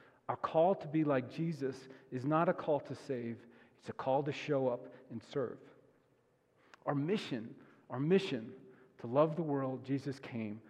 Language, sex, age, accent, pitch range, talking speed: English, male, 40-59, American, 135-165 Hz, 170 wpm